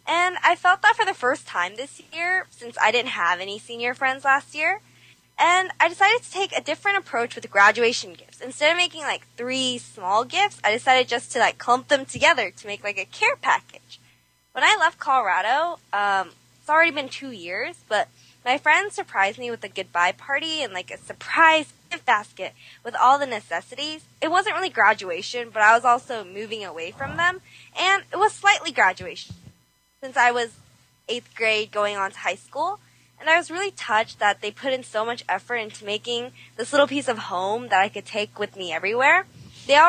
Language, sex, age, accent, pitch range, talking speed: English, female, 20-39, American, 210-315 Hz, 205 wpm